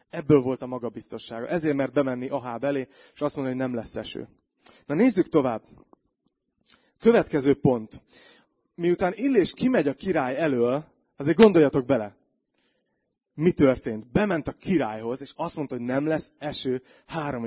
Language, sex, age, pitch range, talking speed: Hungarian, male, 30-49, 125-155 Hz, 150 wpm